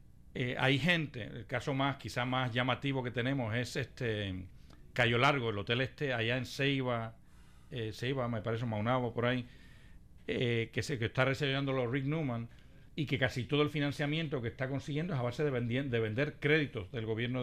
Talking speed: 195 wpm